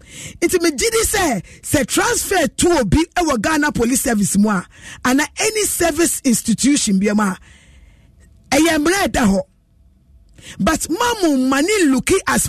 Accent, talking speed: Nigerian, 140 wpm